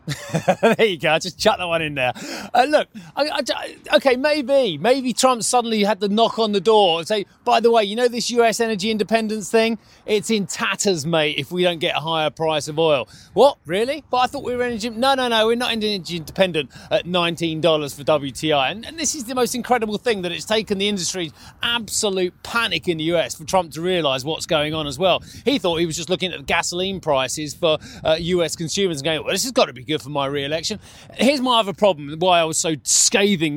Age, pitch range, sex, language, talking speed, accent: 30-49, 170-230 Hz, male, English, 230 wpm, British